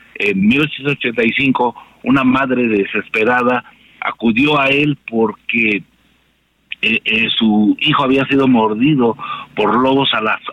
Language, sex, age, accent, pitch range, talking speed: Spanish, male, 60-79, Mexican, 125-190 Hz, 115 wpm